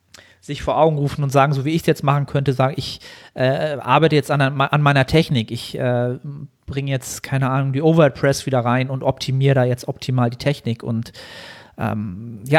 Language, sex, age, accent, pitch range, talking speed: German, male, 40-59, German, 125-155 Hz, 200 wpm